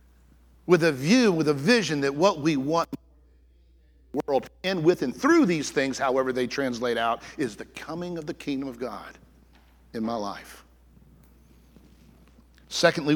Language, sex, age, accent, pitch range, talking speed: English, male, 50-69, American, 115-190 Hz, 160 wpm